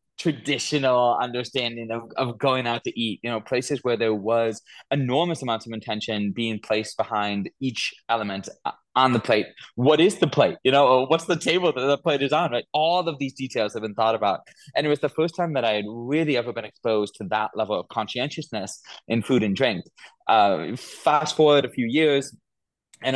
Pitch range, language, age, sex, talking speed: 110-140 Hz, English, 20-39, male, 200 wpm